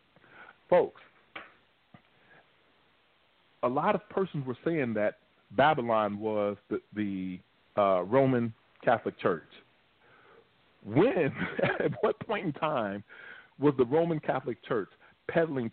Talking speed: 105 wpm